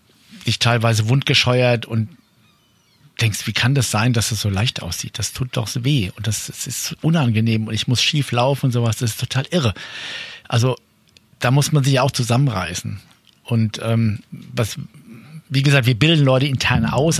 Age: 50-69